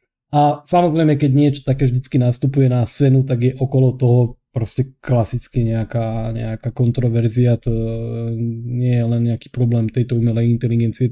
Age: 20-39